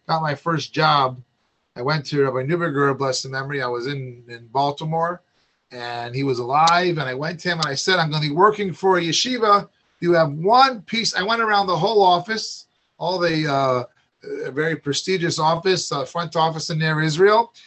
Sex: male